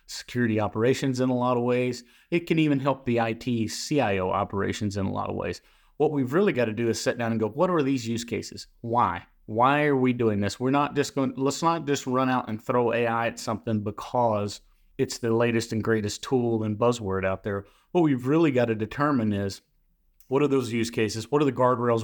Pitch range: 110-135 Hz